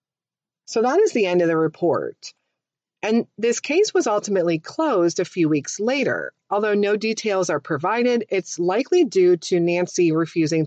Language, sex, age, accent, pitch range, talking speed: English, female, 40-59, American, 165-225 Hz, 165 wpm